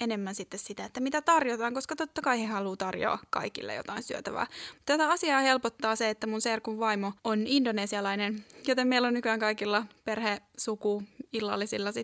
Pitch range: 210-245 Hz